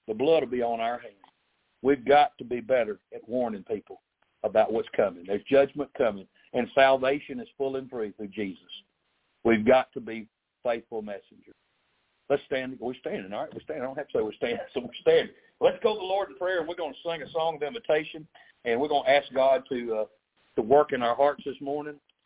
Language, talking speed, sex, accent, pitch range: English, 225 wpm, male, American, 135-170 Hz